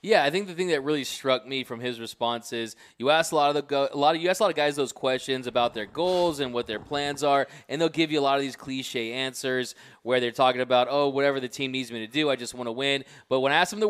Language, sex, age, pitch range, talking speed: English, male, 20-39, 130-150 Hz, 305 wpm